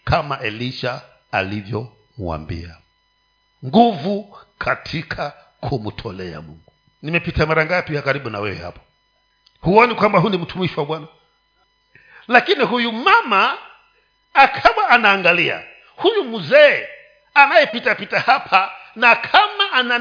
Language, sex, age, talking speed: Swahili, male, 50-69, 100 wpm